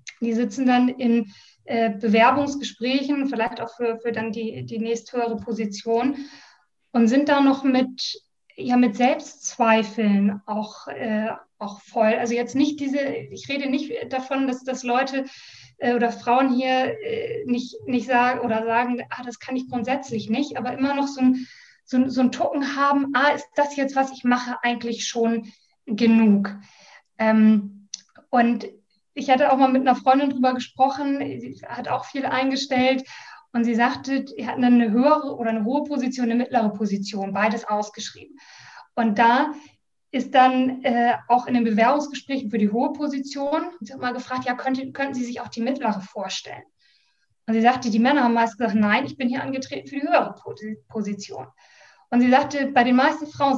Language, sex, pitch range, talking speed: German, female, 230-275 Hz, 175 wpm